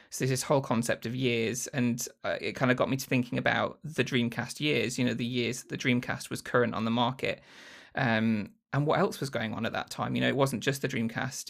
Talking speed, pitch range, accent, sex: 250 wpm, 115-130 Hz, British, male